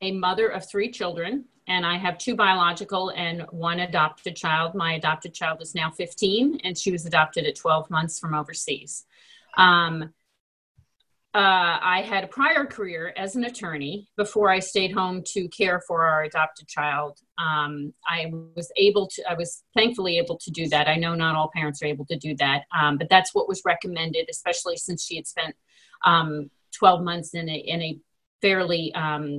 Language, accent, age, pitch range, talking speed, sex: English, American, 40-59, 160-200 Hz, 180 wpm, female